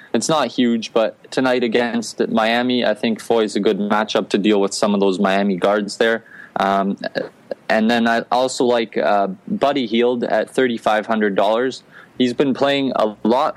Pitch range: 105-125 Hz